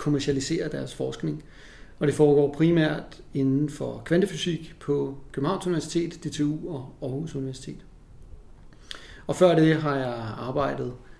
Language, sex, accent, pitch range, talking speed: Danish, male, native, 135-165 Hz, 125 wpm